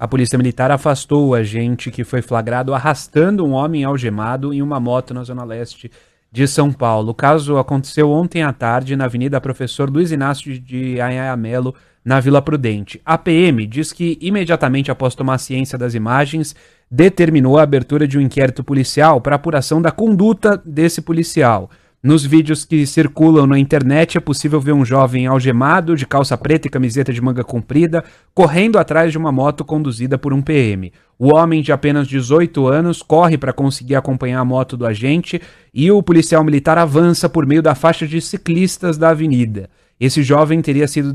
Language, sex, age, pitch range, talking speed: English, male, 30-49, 130-160 Hz, 175 wpm